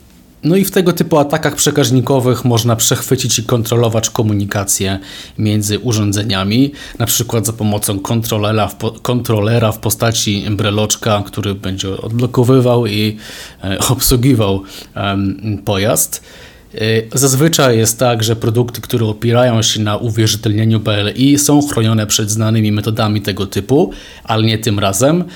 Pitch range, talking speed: 100-120 Hz, 120 wpm